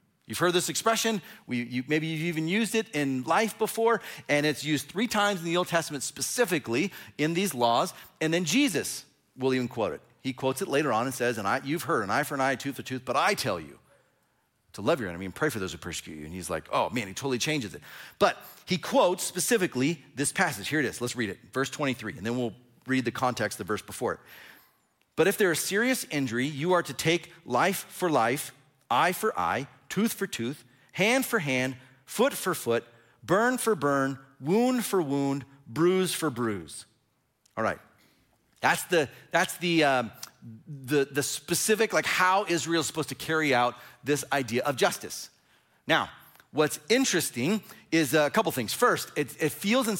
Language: English